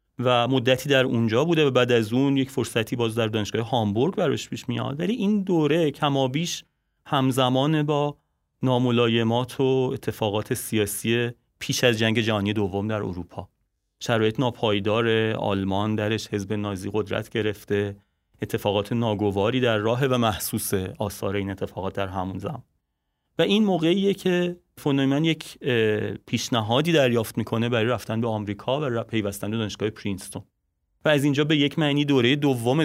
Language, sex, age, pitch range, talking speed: Persian, male, 30-49, 105-135 Hz, 150 wpm